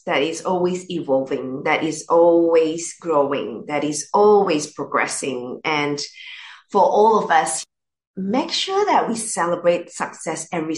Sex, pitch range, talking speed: female, 160-210 Hz, 135 wpm